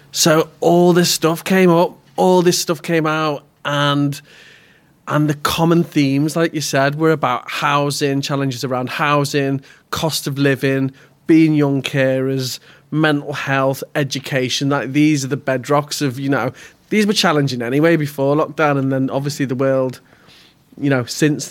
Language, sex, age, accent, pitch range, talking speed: English, male, 20-39, British, 130-155 Hz, 155 wpm